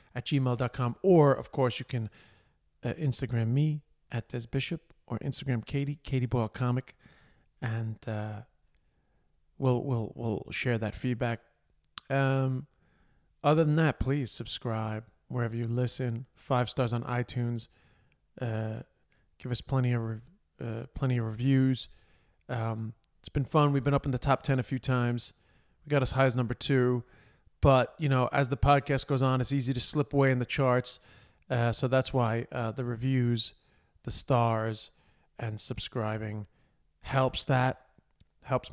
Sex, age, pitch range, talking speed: male, 40-59, 115-135 Hz, 155 wpm